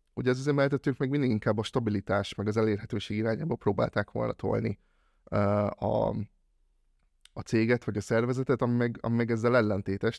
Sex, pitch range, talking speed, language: male, 105-120 Hz, 160 wpm, Hungarian